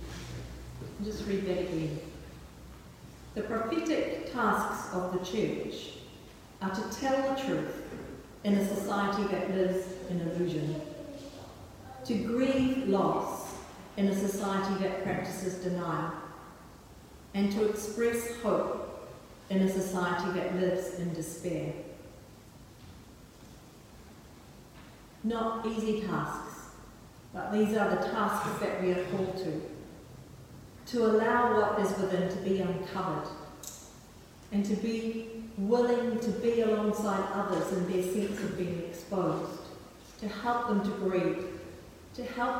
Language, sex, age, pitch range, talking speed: English, female, 50-69, 180-220 Hz, 120 wpm